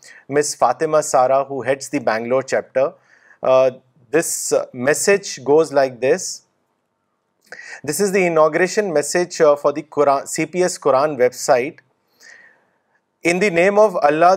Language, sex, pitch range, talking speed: Urdu, male, 145-180 Hz, 125 wpm